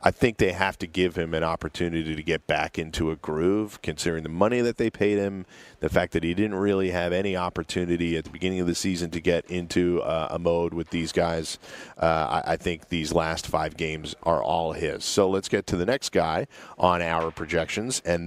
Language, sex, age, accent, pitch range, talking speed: English, male, 40-59, American, 85-105 Hz, 225 wpm